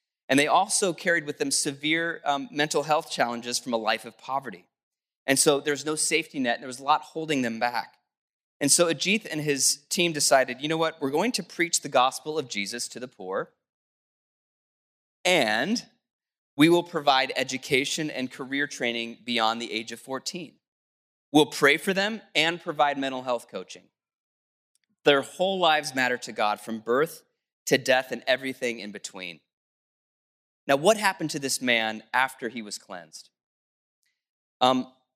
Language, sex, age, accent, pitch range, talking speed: English, male, 20-39, American, 125-170 Hz, 165 wpm